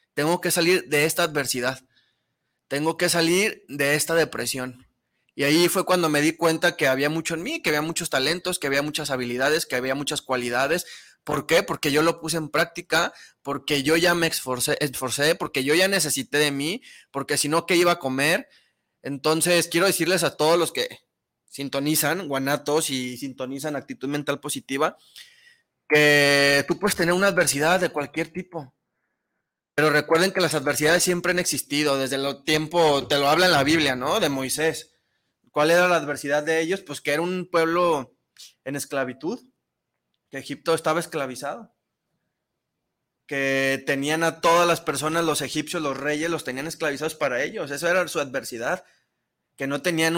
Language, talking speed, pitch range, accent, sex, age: Spanish, 175 wpm, 140-170 Hz, Mexican, male, 20-39